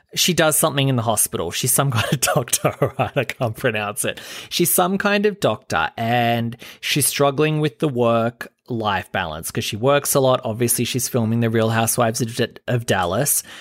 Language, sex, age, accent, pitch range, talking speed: English, male, 20-39, Australian, 115-140 Hz, 185 wpm